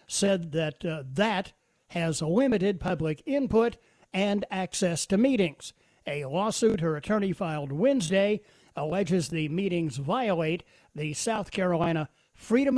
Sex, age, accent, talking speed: male, 50-69, American, 120 wpm